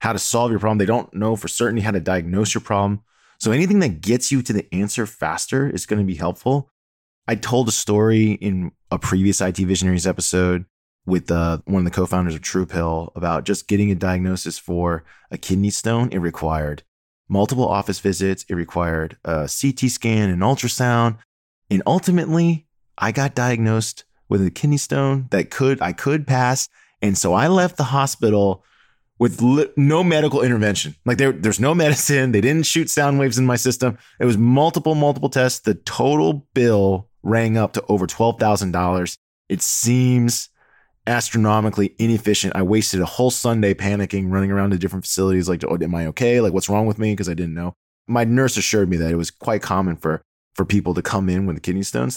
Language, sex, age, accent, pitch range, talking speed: English, male, 20-39, American, 90-125 Hz, 195 wpm